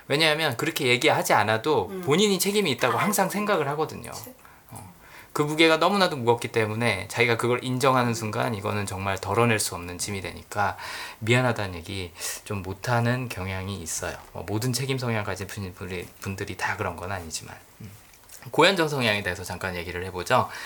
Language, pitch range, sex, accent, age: Korean, 100-145 Hz, male, native, 20-39